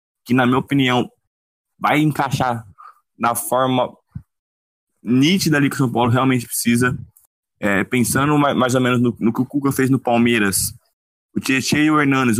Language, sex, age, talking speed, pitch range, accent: Portuguese, male, 20-39, 160 wpm, 120-155 Hz, Brazilian